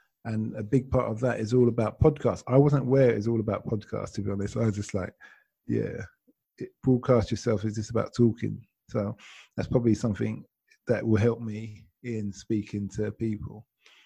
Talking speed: 190 wpm